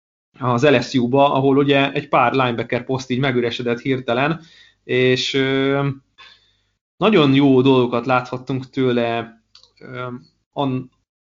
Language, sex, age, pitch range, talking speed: Hungarian, male, 20-39, 120-140 Hz, 100 wpm